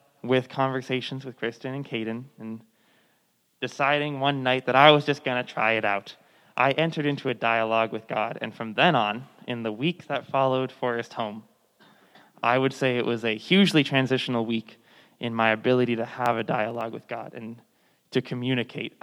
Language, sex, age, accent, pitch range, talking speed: English, male, 20-39, American, 115-135 Hz, 185 wpm